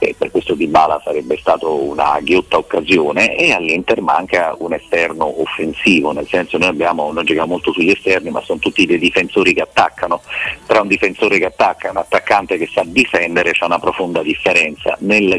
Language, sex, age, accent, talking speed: Italian, male, 40-59, native, 185 wpm